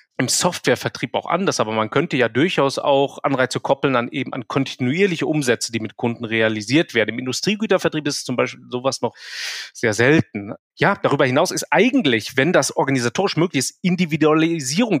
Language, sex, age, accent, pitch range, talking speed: German, male, 30-49, German, 130-175 Hz, 170 wpm